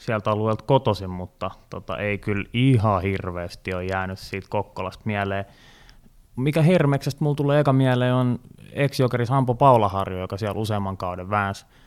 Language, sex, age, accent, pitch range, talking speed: Finnish, male, 20-39, native, 100-120 Hz, 140 wpm